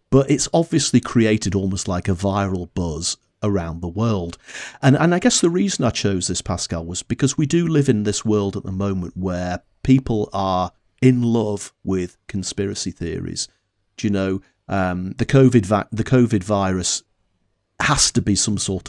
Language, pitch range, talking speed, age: English, 90-115 Hz, 180 wpm, 40-59